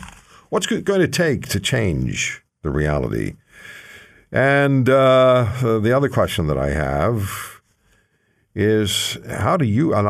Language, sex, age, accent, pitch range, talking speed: English, male, 50-69, American, 85-135 Hz, 130 wpm